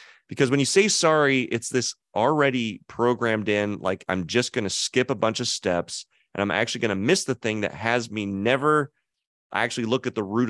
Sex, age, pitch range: male, 30-49, 100-130 Hz